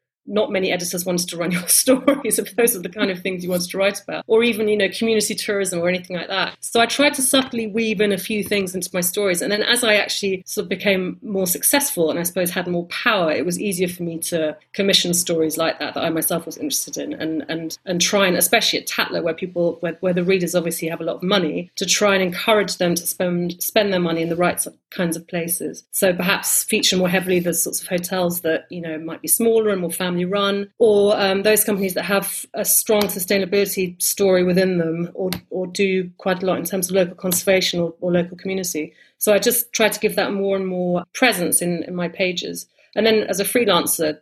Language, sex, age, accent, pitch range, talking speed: English, female, 30-49, British, 170-200 Hz, 245 wpm